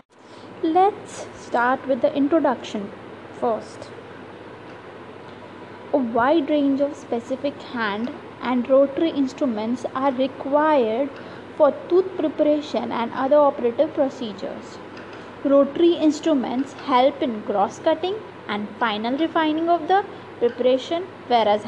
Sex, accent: female, Indian